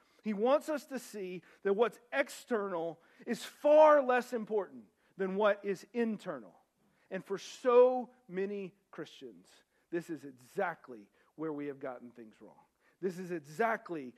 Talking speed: 140 wpm